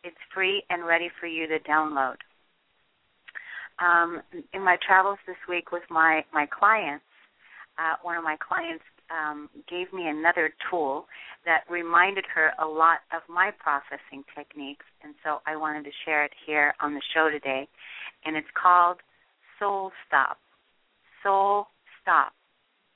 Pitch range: 155-185 Hz